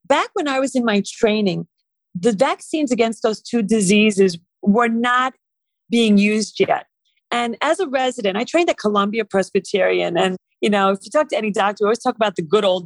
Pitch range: 200-275 Hz